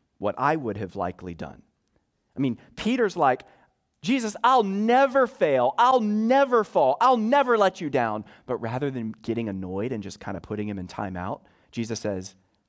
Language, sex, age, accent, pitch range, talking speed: English, male, 30-49, American, 90-120 Hz, 180 wpm